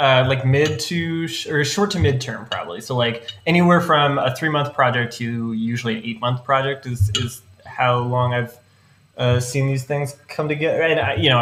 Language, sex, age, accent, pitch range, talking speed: English, male, 20-39, American, 110-135 Hz, 205 wpm